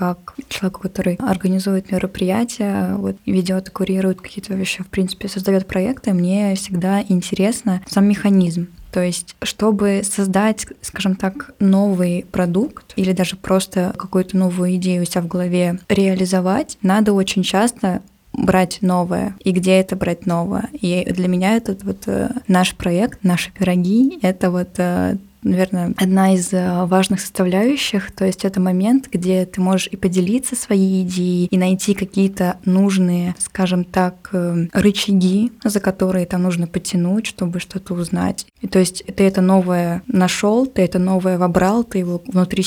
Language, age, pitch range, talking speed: Russian, 20-39, 180-200 Hz, 145 wpm